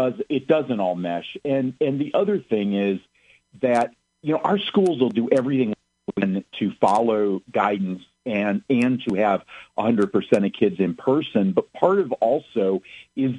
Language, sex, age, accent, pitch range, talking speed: English, male, 50-69, American, 95-125 Hz, 155 wpm